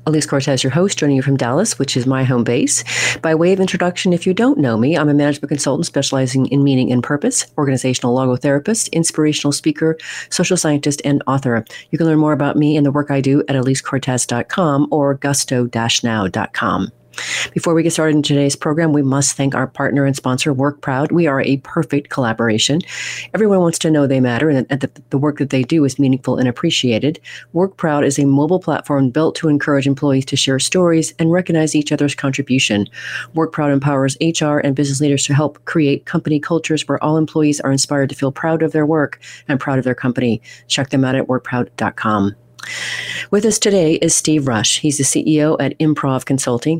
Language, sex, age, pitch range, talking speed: English, female, 40-59, 135-160 Hz, 195 wpm